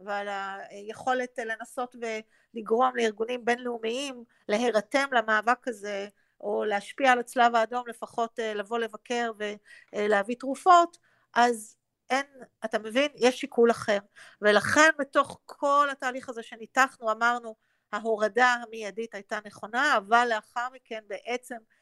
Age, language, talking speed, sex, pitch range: 50-69, Hebrew, 115 wpm, female, 220-255 Hz